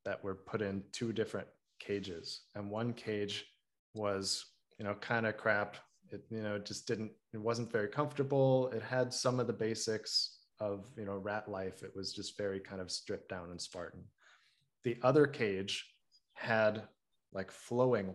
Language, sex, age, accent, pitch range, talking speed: English, male, 20-39, American, 100-125 Hz, 170 wpm